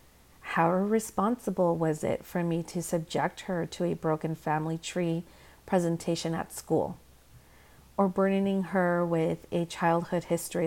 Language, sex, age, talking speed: English, female, 40-59, 135 wpm